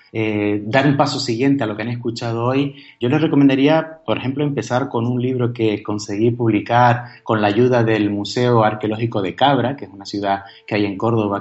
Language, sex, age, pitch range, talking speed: Spanish, male, 30-49, 105-130 Hz, 205 wpm